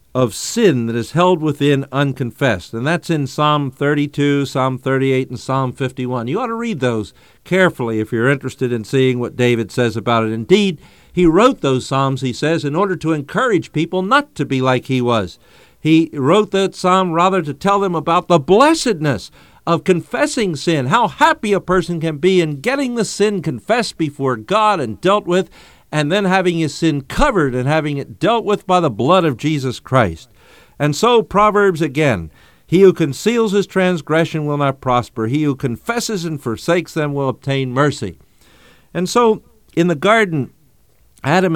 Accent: American